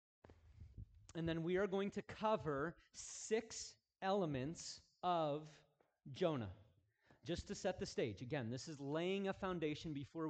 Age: 30-49